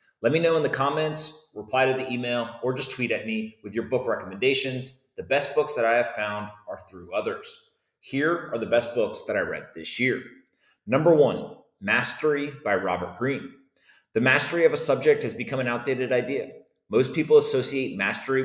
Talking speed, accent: 190 wpm, American